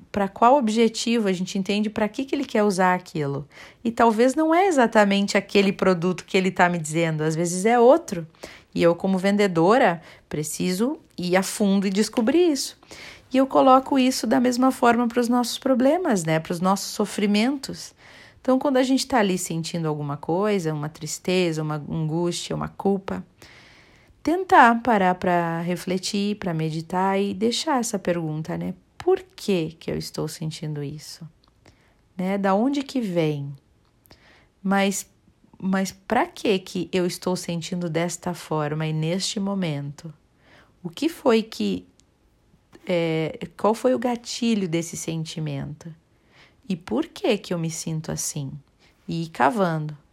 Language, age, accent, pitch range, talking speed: Portuguese, 40-59, Brazilian, 165-230 Hz, 155 wpm